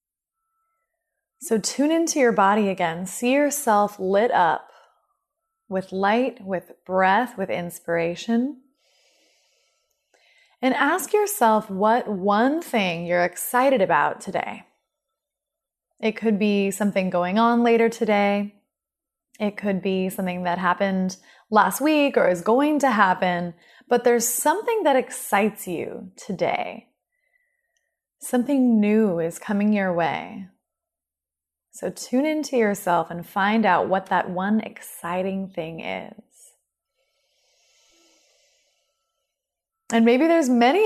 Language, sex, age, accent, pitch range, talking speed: English, female, 20-39, American, 185-265 Hz, 115 wpm